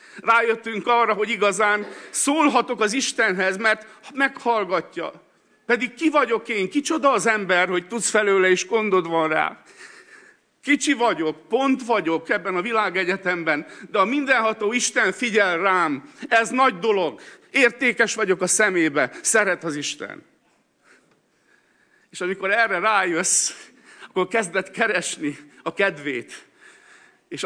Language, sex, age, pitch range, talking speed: Hungarian, male, 50-69, 160-230 Hz, 120 wpm